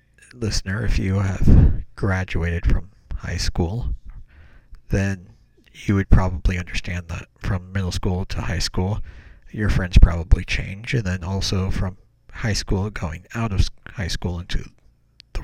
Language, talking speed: English, 145 wpm